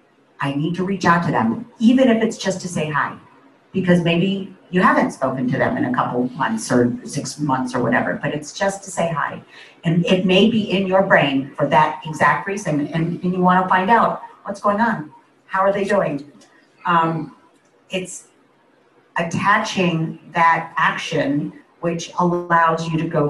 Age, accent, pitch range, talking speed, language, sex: 50-69, American, 155-190 Hz, 185 wpm, English, female